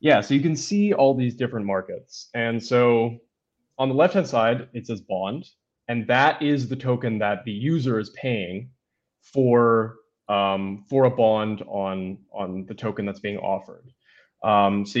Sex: male